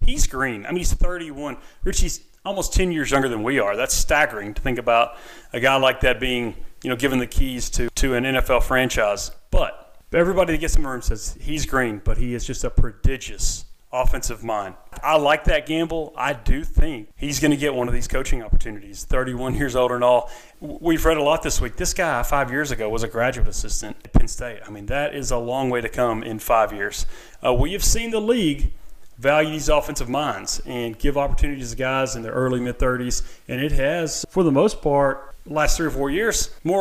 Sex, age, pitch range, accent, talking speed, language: male, 30-49, 120-145 Hz, American, 220 wpm, English